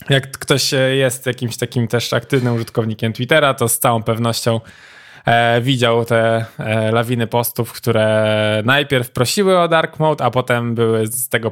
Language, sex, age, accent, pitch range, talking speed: Polish, male, 20-39, native, 115-135 Hz, 145 wpm